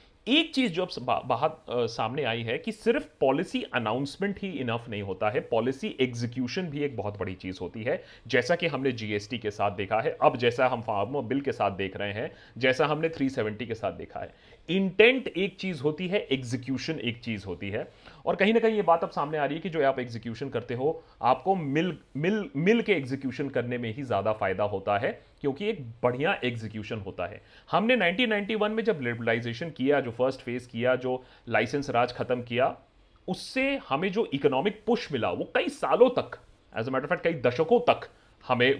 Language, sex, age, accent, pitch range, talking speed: Hindi, male, 30-49, native, 115-170 Hz, 205 wpm